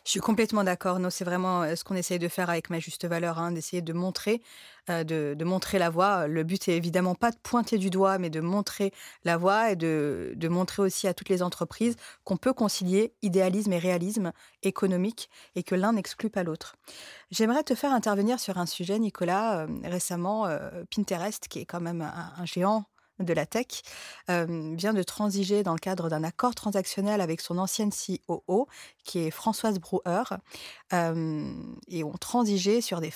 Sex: female